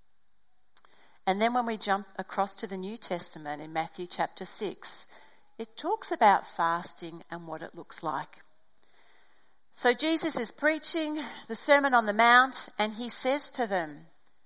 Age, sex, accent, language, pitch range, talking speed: 40-59, female, Australian, English, 170-230 Hz, 155 wpm